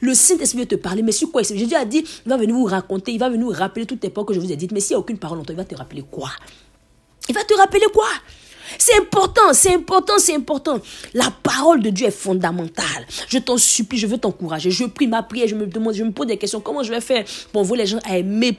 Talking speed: 290 wpm